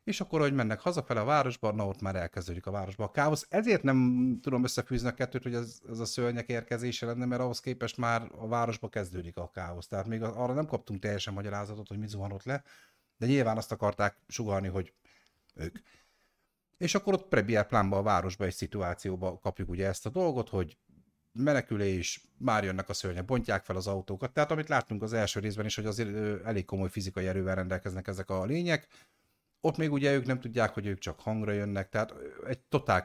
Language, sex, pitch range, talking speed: Hungarian, male, 95-120 Hz, 200 wpm